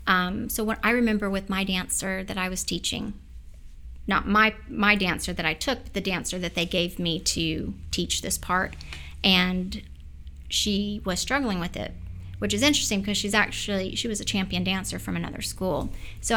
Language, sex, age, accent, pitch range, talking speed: English, female, 30-49, American, 175-200 Hz, 185 wpm